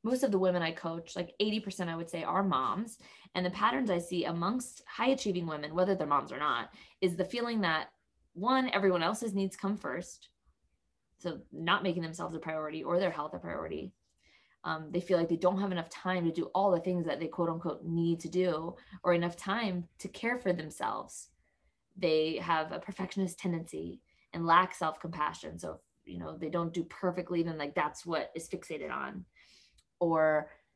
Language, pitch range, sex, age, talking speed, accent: English, 165-195 Hz, female, 20-39, 195 wpm, American